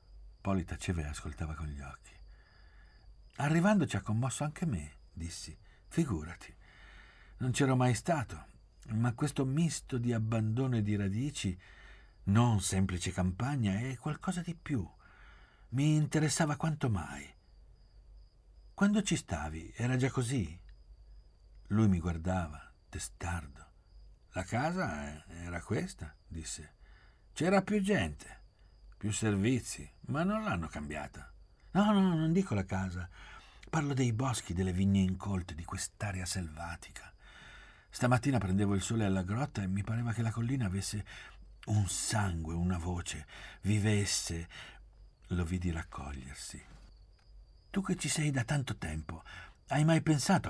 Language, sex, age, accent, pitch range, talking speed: Italian, male, 60-79, native, 85-130 Hz, 130 wpm